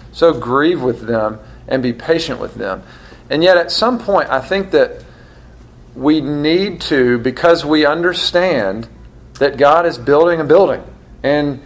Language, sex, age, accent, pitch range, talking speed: English, male, 40-59, American, 130-175 Hz, 155 wpm